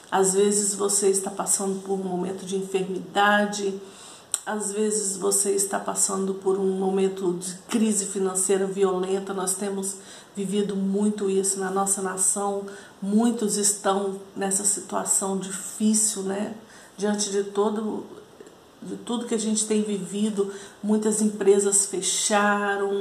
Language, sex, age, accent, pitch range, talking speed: Portuguese, female, 50-69, Brazilian, 195-215 Hz, 125 wpm